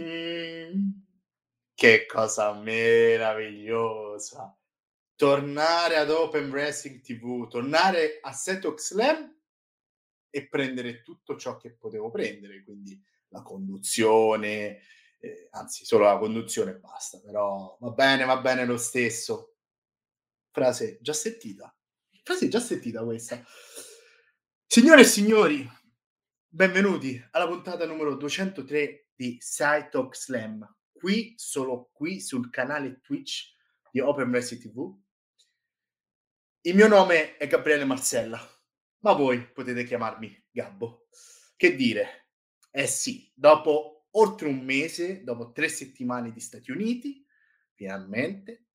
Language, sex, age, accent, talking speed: Italian, male, 30-49, native, 110 wpm